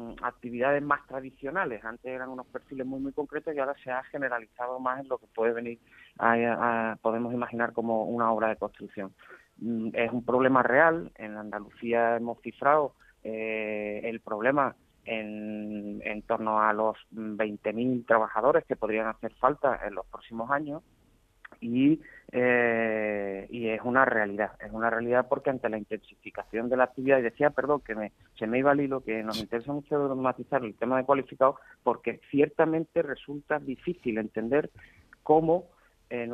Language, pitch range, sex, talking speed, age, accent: Spanish, 110-135 Hz, male, 160 wpm, 30-49, Spanish